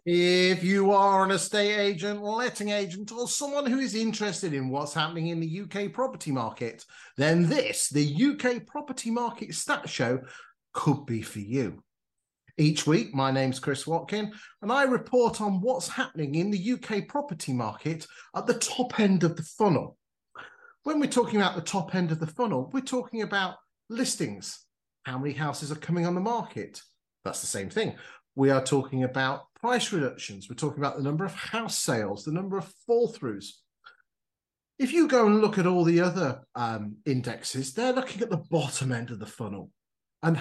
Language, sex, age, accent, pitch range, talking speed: English, male, 40-59, British, 150-230 Hz, 185 wpm